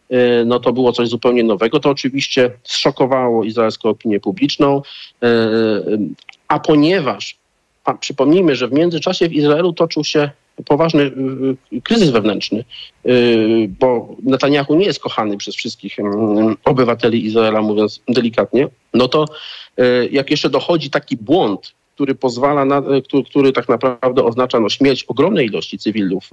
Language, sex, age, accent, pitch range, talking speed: Polish, male, 40-59, native, 115-140 Hz, 130 wpm